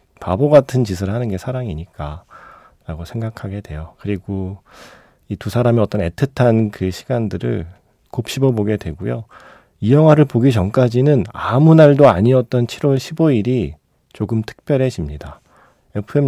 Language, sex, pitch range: Korean, male, 95-140 Hz